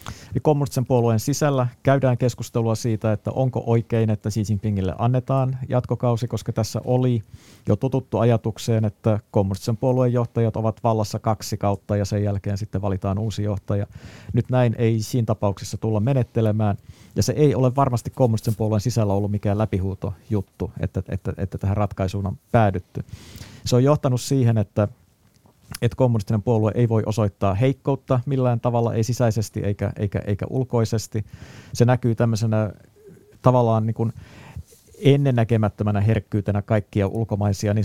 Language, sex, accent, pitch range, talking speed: Finnish, male, native, 105-120 Hz, 145 wpm